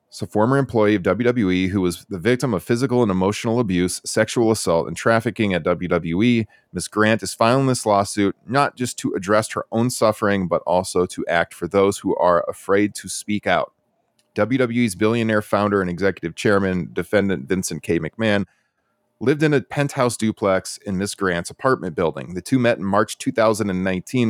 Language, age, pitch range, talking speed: English, 30-49, 95-120 Hz, 180 wpm